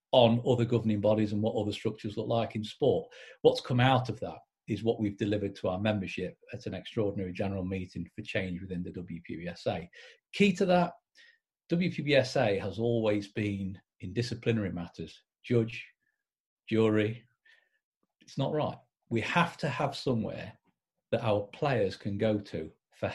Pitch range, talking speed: 105-130 Hz, 160 wpm